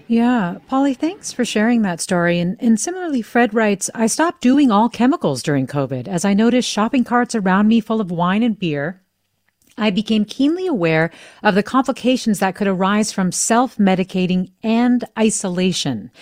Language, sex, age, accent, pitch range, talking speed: English, female, 40-59, American, 160-225 Hz, 165 wpm